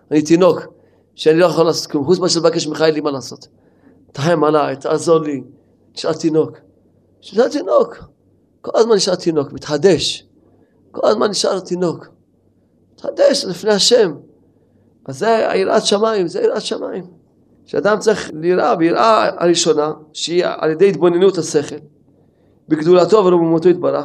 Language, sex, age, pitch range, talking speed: Hebrew, male, 40-59, 155-200 Hz, 135 wpm